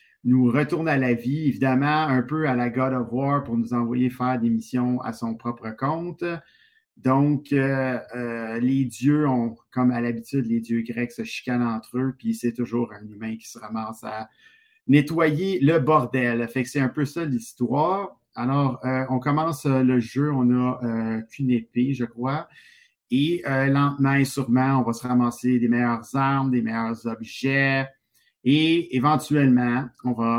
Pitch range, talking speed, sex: 120-140 Hz, 180 wpm, male